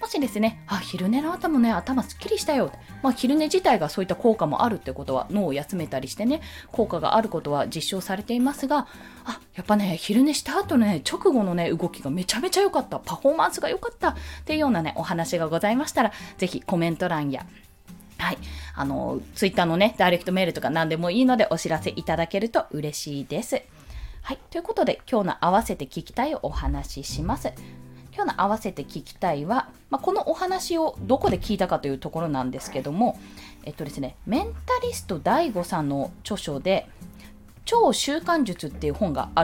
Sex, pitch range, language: female, 165-275 Hz, Japanese